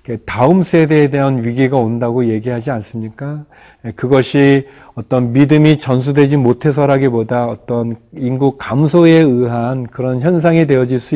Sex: male